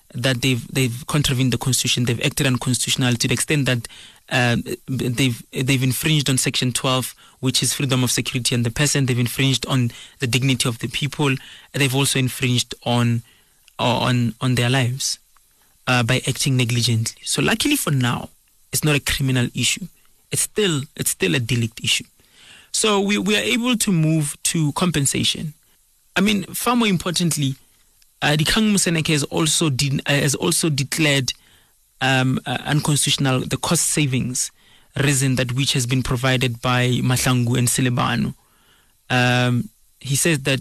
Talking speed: 155 wpm